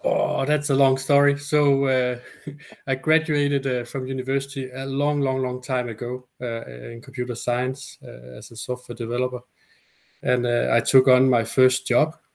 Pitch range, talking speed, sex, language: 120-135 Hz, 170 wpm, male, English